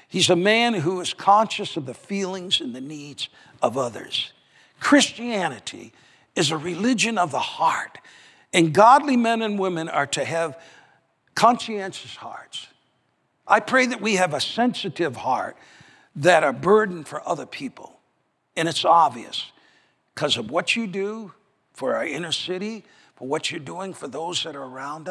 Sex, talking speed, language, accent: male, 160 wpm, English, American